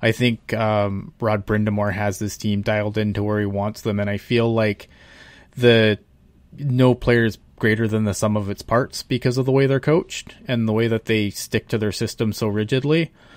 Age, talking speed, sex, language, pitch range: 20-39, 205 wpm, male, English, 105-120 Hz